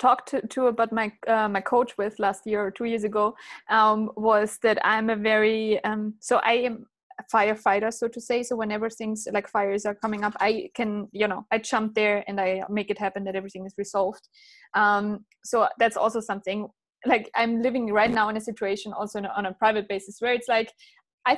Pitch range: 200-235 Hz